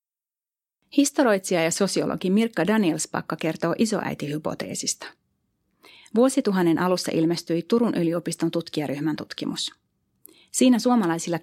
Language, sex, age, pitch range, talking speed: Finnish, female, 30-49, 165-220 Hz, 90 wpm